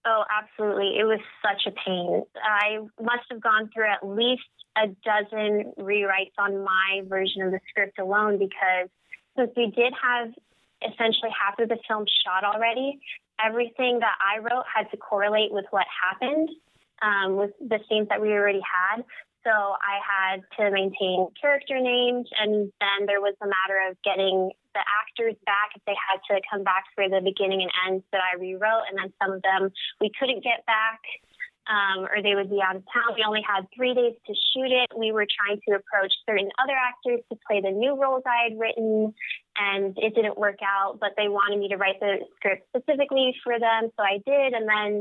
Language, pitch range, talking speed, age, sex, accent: English, 195-230 Hz, 200 wpm, 20-39, female, American